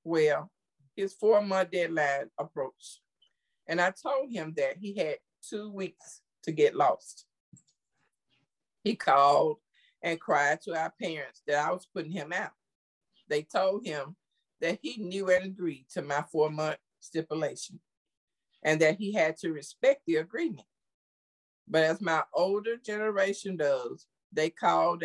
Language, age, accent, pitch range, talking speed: English, 50-69, American, 150-195 Hz, 140 wpm